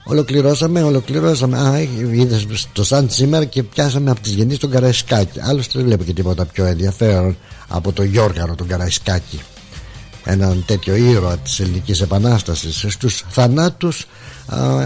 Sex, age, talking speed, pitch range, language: male, 60-79, 135 wpm, 90-115 Hz, Greek